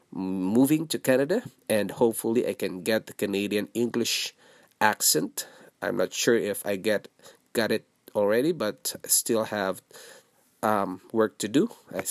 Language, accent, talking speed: English, Filipino, 150 wpm